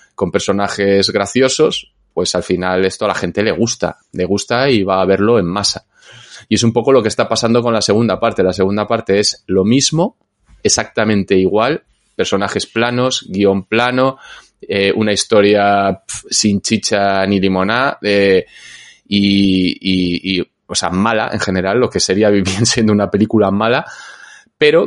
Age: 20-39